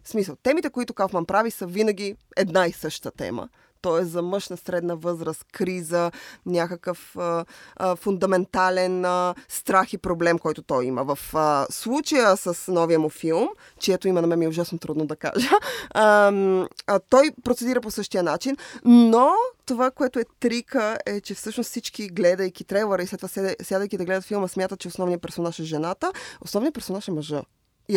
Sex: female